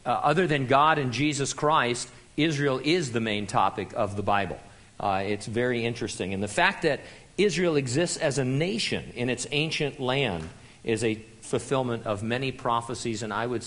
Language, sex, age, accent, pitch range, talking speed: English, male, 50-69, American, 115-140 Hz, 180 wpm